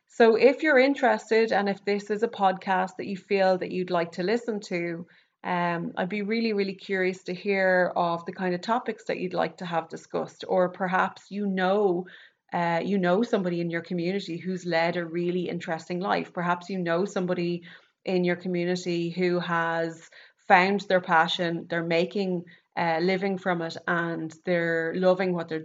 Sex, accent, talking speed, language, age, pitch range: female, Irish, 185 wpm, English, 30-49, 170-195 Hz